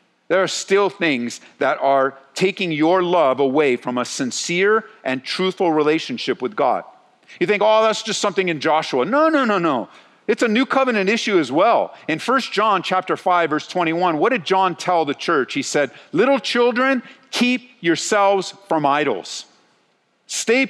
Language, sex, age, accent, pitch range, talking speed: English, male, 50-69, American, 165-230 Hz, 170 wpm